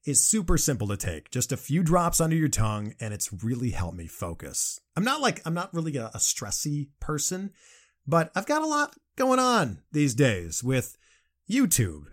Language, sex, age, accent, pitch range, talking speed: English, male, 30-49, American, 120-195 Hz, 195 wpm